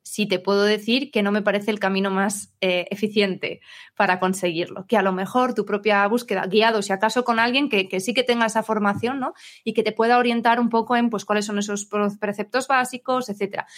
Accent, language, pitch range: Spanish, Spanish, 205-245 Hz